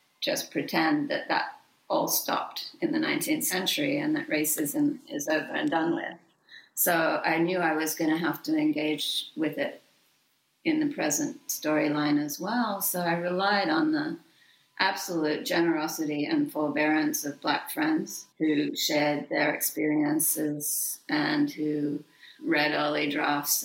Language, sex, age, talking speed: English, female, 40-59, 145 wpm